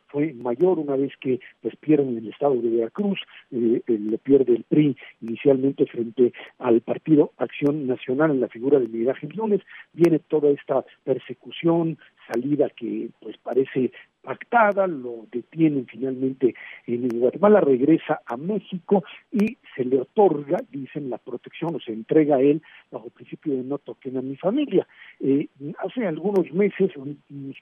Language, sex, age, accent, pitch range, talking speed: Spanish, male, 50-69, Mexican, 130-185 Hz, 155 wpm